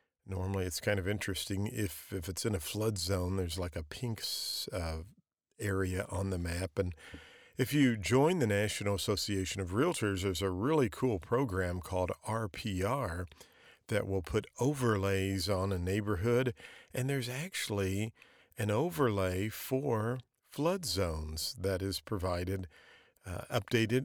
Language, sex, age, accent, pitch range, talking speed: English, male, 50-69, American, 95-120 Hz, 140 wpm